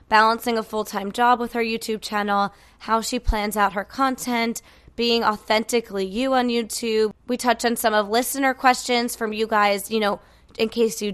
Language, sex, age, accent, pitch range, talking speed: English, female, 20-39, American, 210-250 Hz, 185 wpm